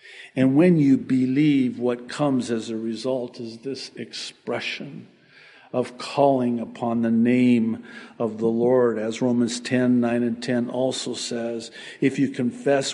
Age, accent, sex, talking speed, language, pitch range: 50-69, American, male, 145 wpm, English, 115-135 Hz